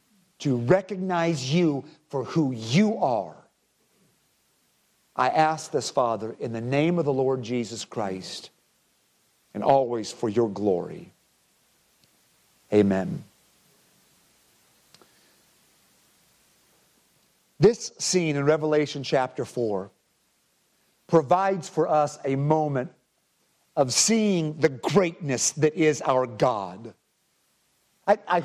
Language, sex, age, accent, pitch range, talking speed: English, male, 50-69, American, 150-195 Hz, 95 wpm